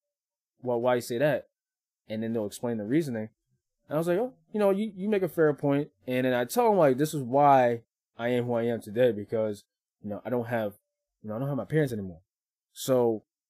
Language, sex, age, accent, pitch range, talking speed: English, male, 20-39, American, 105-135 Hz, 235 wpm